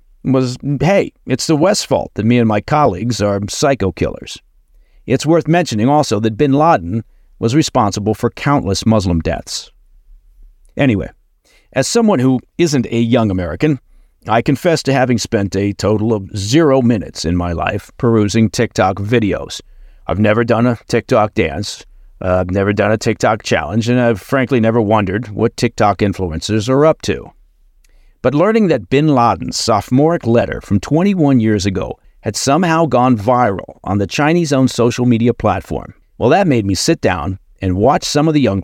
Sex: male